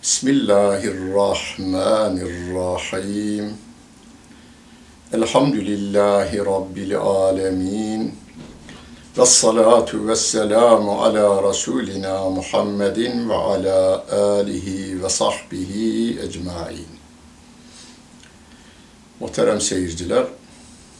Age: 60-79